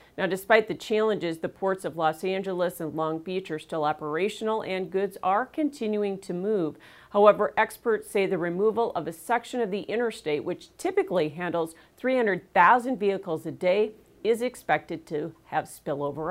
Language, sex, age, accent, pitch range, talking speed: English, female, 40-59, American, 165-220 Hz, 160 wpm